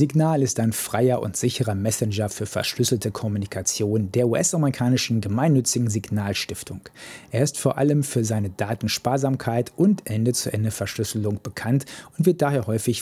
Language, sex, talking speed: German, male, 130 wpm